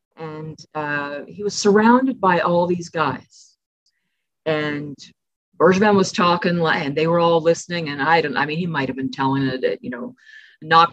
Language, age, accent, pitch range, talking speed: English, 40-59, American, 155-205 Hz, 170 wpm